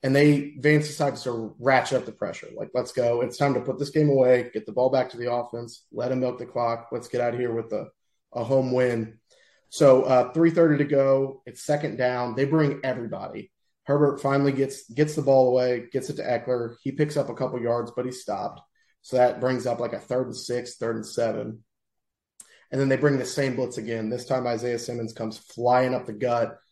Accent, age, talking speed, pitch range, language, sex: American, 30-49, 225 wpm, 115-135 Hz, English, male